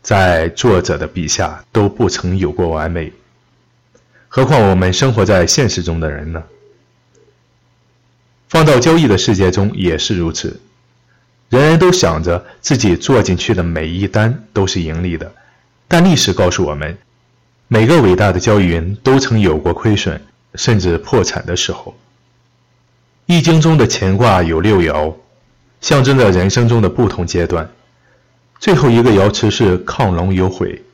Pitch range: 90-125 Hz